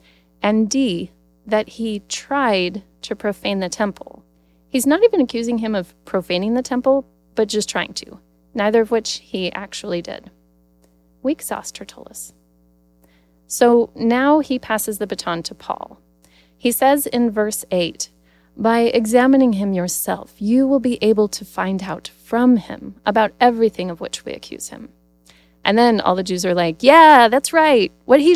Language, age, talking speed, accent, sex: English, 30-49, 160 wpm, American, female